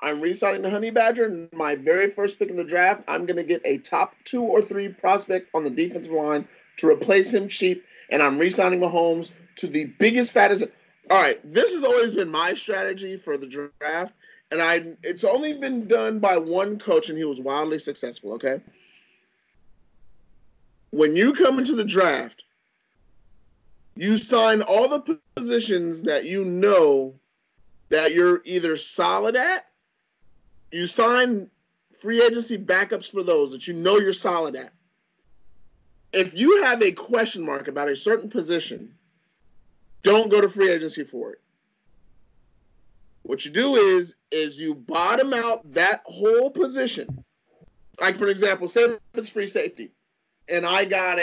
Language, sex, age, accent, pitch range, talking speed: English, male, 40-59, American, 165-235 Hz, 155 wpm